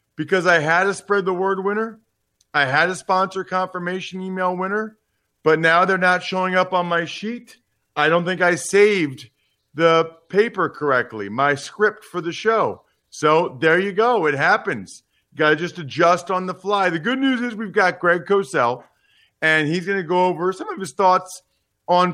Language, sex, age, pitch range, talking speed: English, male, 40-59, 150-195 Hz, 190 wpm